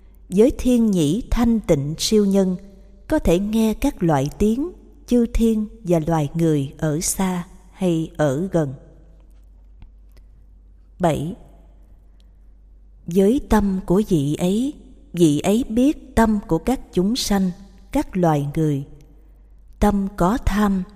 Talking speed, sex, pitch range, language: 125 wpm, female, 170-225 Hz, Vietnamese